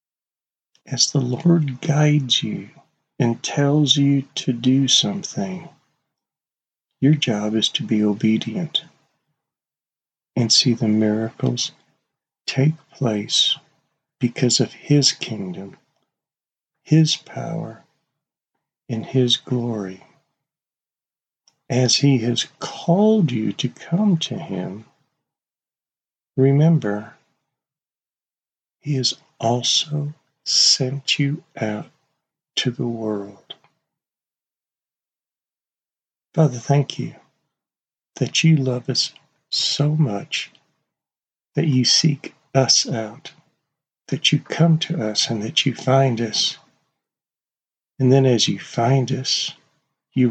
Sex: male